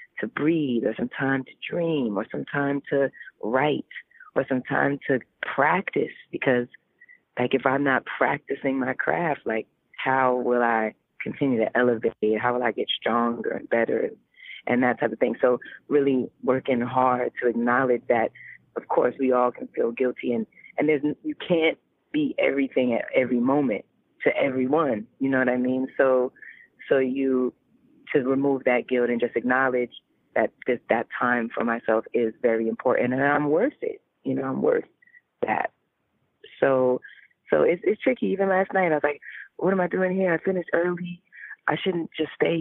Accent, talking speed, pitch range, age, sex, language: American, 175 wpm, 125-160 Hz, 20-39, female, English